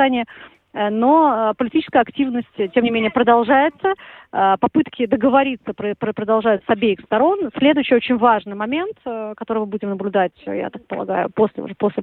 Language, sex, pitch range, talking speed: Russian, female, 215-275 Hz, 135 wpm